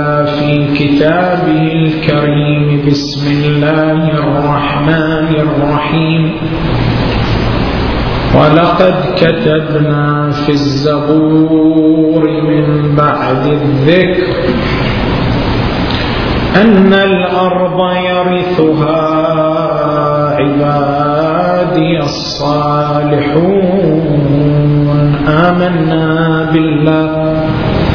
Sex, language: male, Arabic